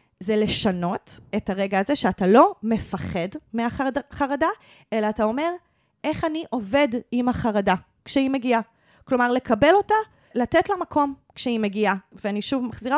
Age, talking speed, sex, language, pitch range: 30-49, 140 wpm, female, Hebrew, 200-275 Hz